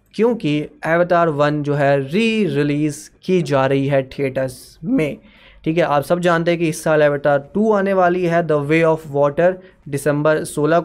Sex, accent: male, native